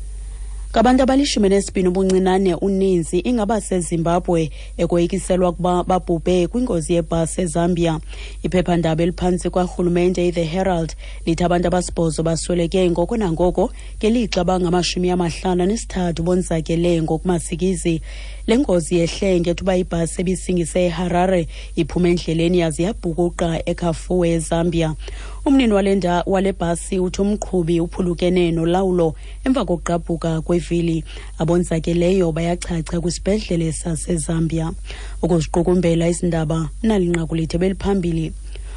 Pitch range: 165-185 Hz